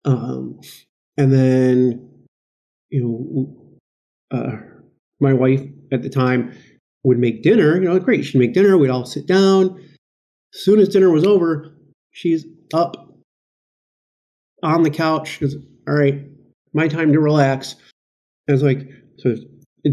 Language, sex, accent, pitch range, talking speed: English, male, American, 135-170 Hz, 140 wpm